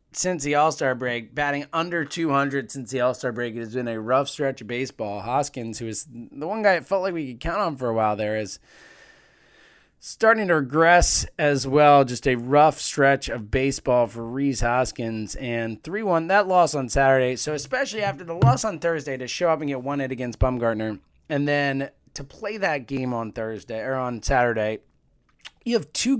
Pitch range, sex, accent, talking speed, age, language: 130-190 Hz, male, American, 200 wpm, 20-39, English